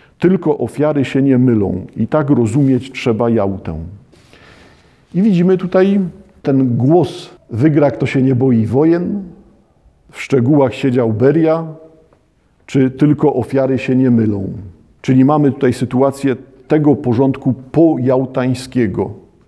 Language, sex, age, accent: Polish, male, 50-69, native